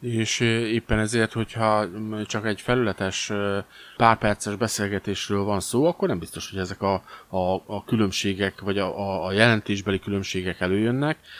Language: Hungarian